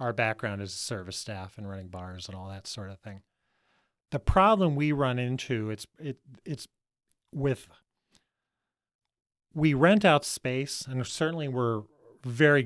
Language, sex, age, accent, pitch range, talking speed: English, male, 40-59, American, 105-135 Hz, 145 wpm